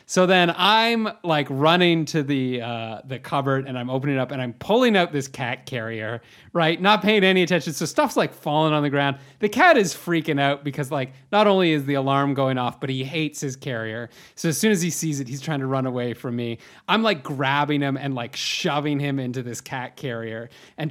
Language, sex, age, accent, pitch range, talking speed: English, male, 30-49, American, 125-155 Hz, 230 wpm